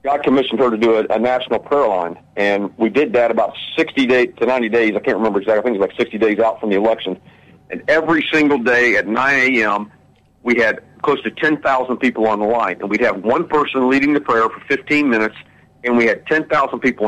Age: 50-69